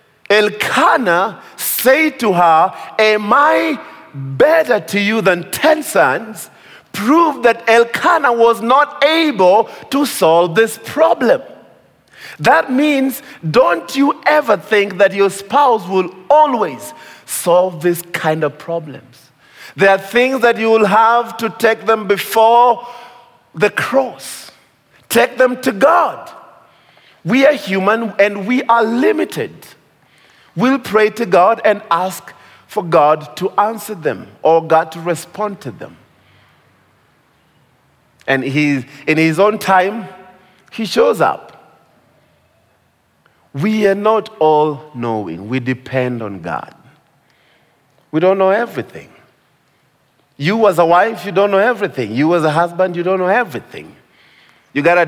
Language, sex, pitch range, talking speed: English, male, 170-230 Hz, 130 wpm